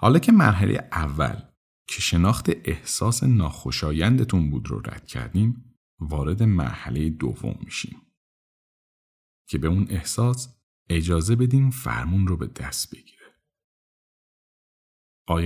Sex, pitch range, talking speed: male, 80-110 Hz, 110 wpm